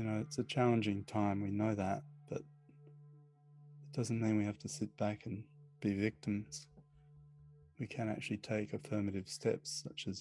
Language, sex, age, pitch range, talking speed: English, male, 20-39, 100-125 Hz, 170 wpm